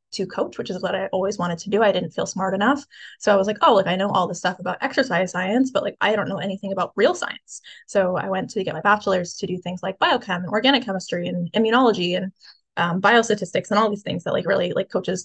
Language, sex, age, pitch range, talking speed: English, female, 10-29, 190-230 Hz, 265 wpm